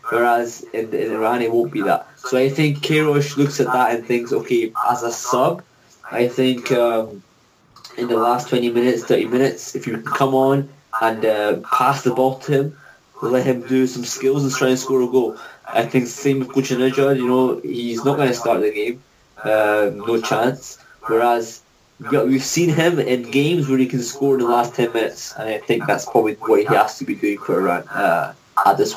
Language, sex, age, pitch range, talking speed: English, male, 20-39, 115-140 Hz, 210 wpm